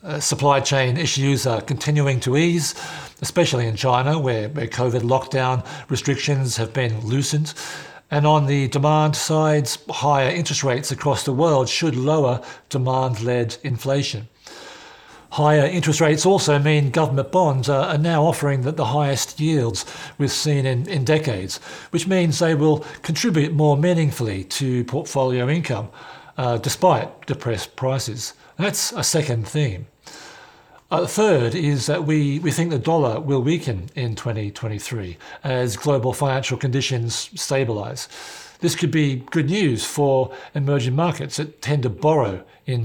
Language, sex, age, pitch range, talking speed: English, male, 50-69, 125-150 Hz, 145 wpm